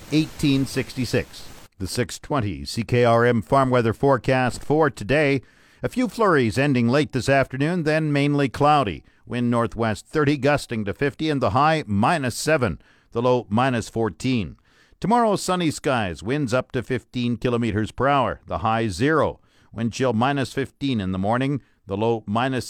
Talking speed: 150 wpm